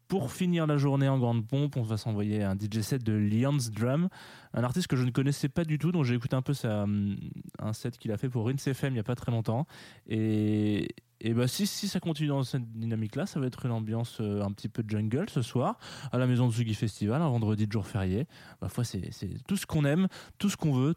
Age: 20-39